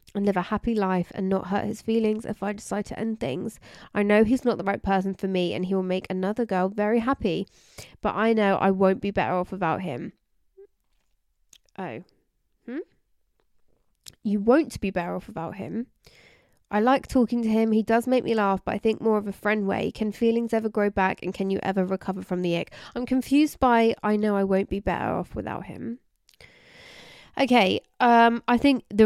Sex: female